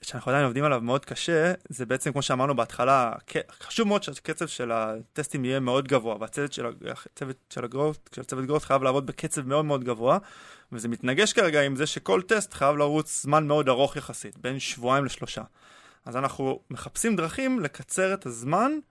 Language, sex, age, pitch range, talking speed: Hebrew, male, 20-39, 125-165 Hz, 170 wpm